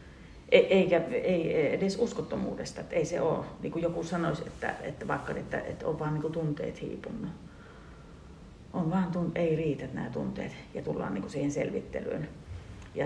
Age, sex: 40-59, female